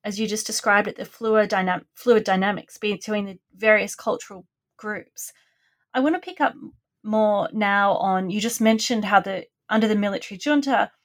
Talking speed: 175 wpm